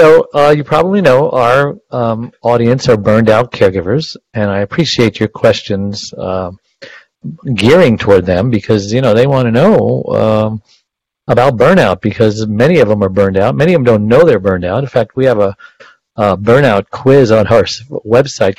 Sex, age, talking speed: male, 50-69, 180 wpm